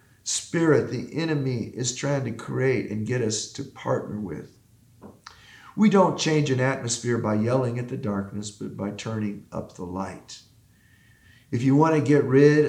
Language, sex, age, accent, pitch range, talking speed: English, male, 50-69, American, 115-150 Hz, 165 wpm